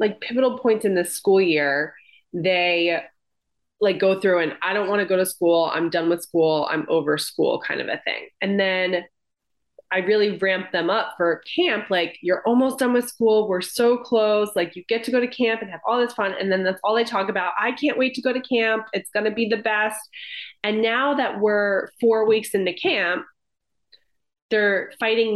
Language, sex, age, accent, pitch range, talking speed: English, female, 20-39, American, 185-230 Hz, 215 wpm